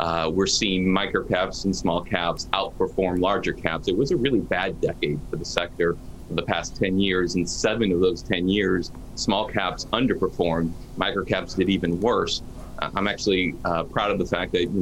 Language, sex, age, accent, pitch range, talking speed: English, male, 30-49, American, 90-110 Hz, 185 wpm